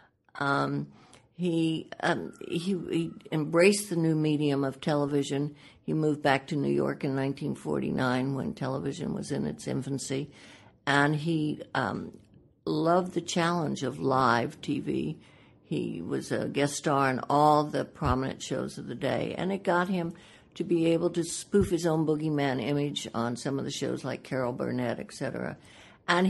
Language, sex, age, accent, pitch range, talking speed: English, female, 60-79, American, 150-185 Hz, 160 wpm